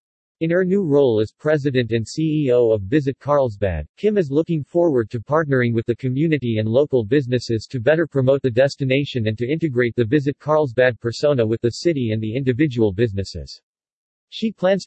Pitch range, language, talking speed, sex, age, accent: 120-150 Hz, English, 180 wpm, male, 50-69, American